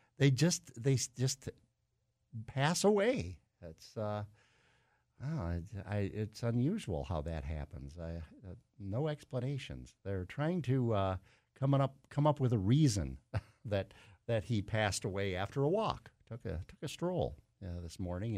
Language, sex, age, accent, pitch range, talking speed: English, male, 50-69, American, 100-135 Hz, 155 wpm